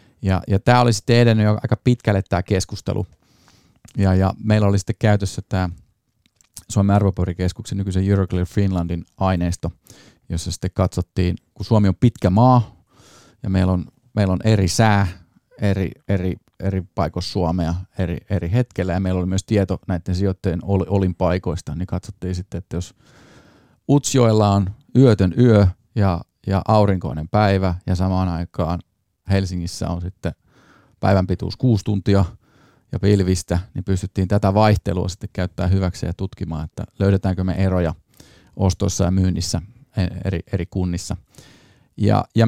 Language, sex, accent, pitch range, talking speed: Finnish, male, native, 90-105 Hz, 140 wpm